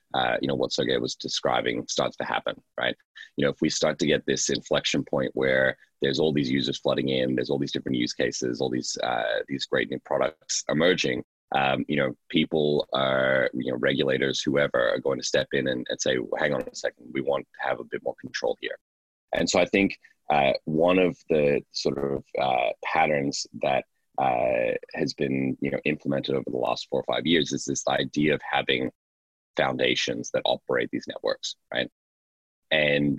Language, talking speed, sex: English, 195 wpm, male